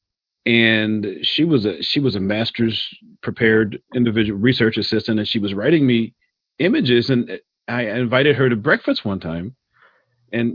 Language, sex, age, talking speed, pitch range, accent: English, male, 40-59, 155 wpm, 105-135 Hz, American